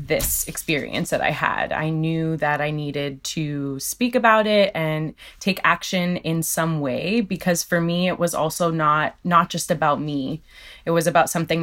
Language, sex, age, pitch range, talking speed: English, female, 20-39, 155-180 Hz, 180 wpm